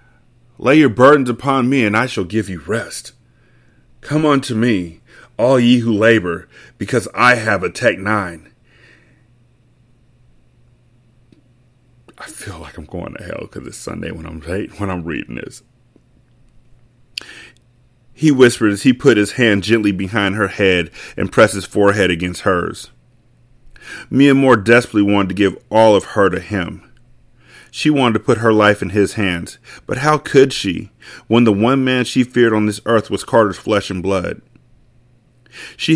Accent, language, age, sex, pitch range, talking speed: American, English, 30-49, male, 100-125 Hz, 160 wpm